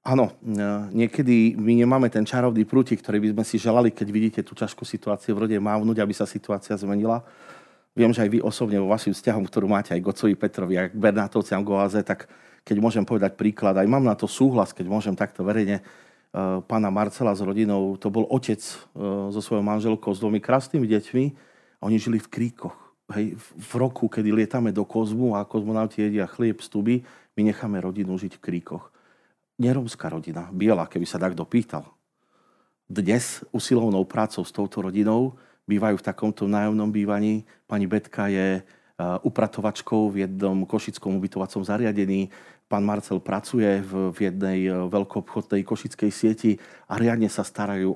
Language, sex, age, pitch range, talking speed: Slovak, male, 40-59, 100-115 Hz, 165 wpm